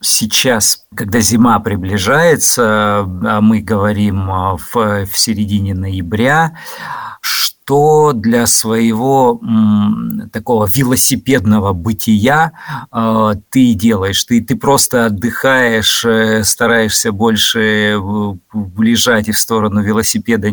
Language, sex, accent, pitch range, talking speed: Russian, male, native, 105-130 Hz, 95 wpm